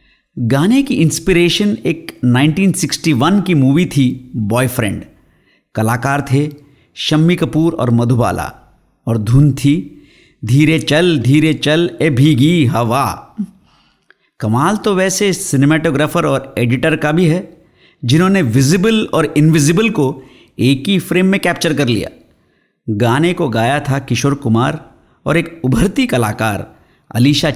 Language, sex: Hindi, male